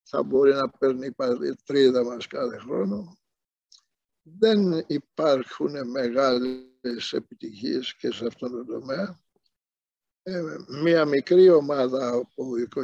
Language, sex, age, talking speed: Greek, male, 60-79, 105 wpm